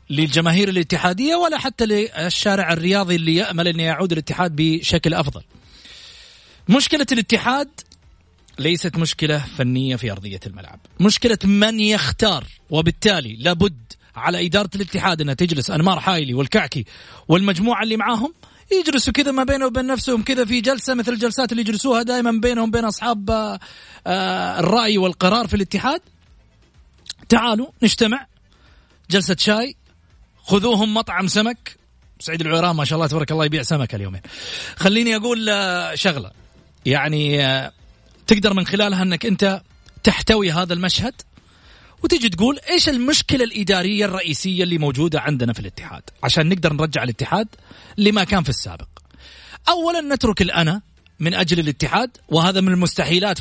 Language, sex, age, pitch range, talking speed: Arabic, male, 30-49, 160-225 Hz, 130 wpm